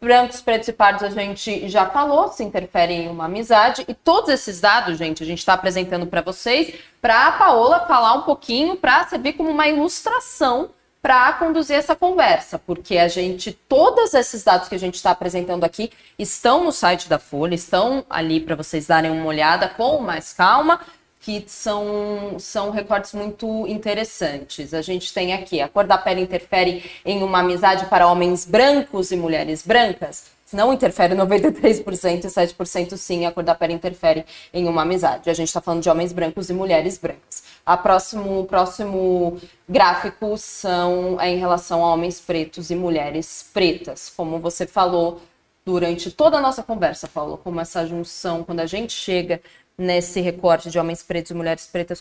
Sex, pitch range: female, 170-205 Hz